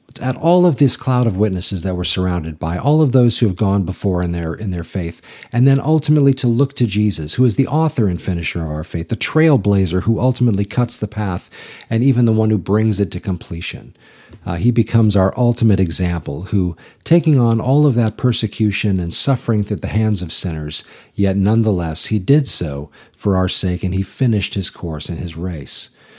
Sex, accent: male, American